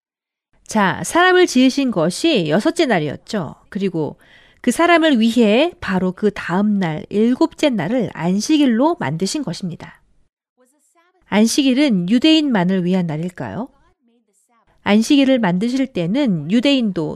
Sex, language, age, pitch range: female, Korean, 40-59, 185-270 Hz